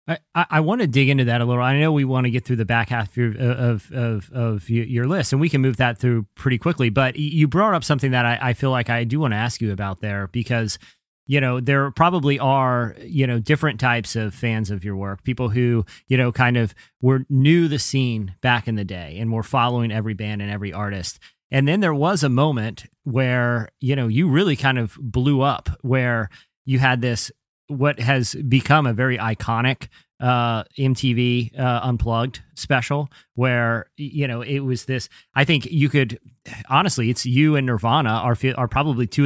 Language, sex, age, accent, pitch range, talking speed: English, male, 30-49, American, 115-135 Hz, 210 wpm